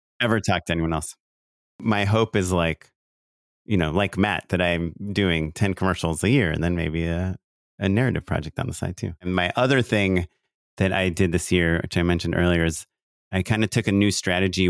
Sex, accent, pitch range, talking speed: male, American, 85-105 Hz, 210 wpm